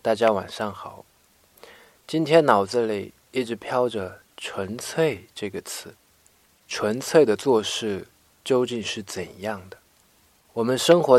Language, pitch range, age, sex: Chinese, 95-120 Hz, 20-39, male